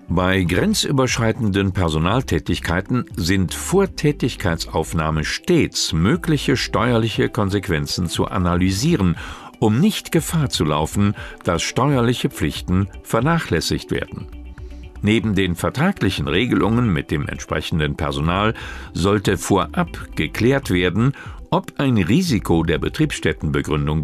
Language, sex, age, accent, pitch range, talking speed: German, male, 50-69, German, 85-125 Hz, 95 wpm